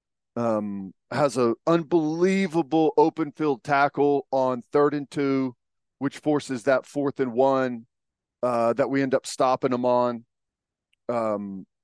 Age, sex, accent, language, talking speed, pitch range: 40-59, male, American, English, 130 wpm, 120-145 Hz